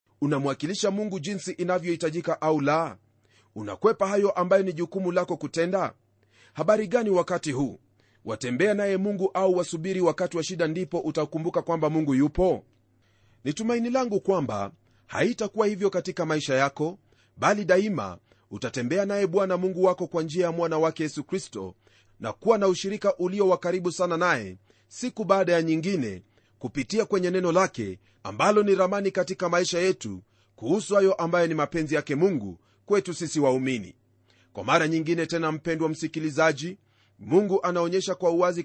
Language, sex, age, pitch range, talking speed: Swahili, male, 40-59, 135-185 Hz, 145 wpm